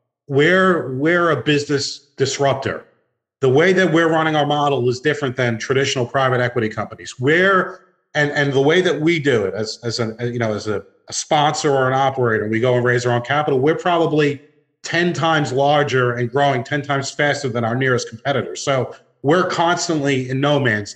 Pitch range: 130-155 Hz